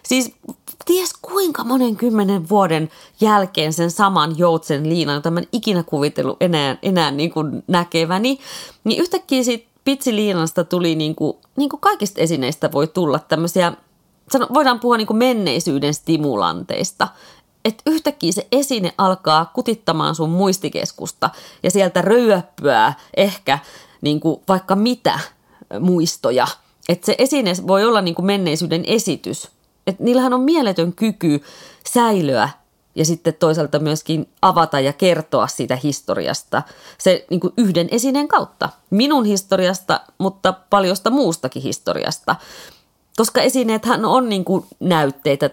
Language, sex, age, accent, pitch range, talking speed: Finnish, female, 30-49, native, 160-230 Hz, 130 wpm